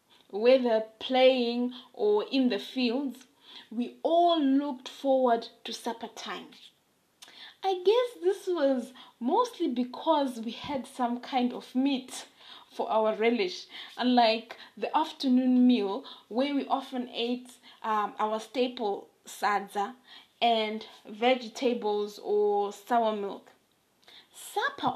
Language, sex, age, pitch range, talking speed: English, female, 20-39, 230-275 Hz, 110 wpm